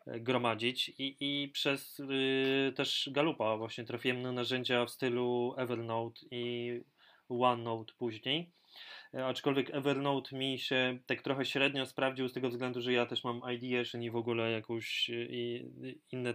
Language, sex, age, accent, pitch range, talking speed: Polish, male, 20-39, native, 115-125 Hz, 140 wpm